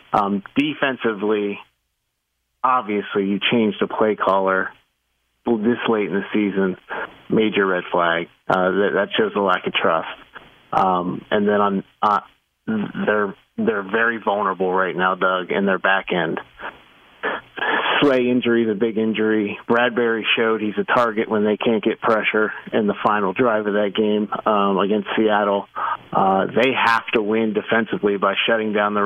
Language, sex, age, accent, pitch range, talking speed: English, male, 30-49, American, 100-115 Hz, 155 wpm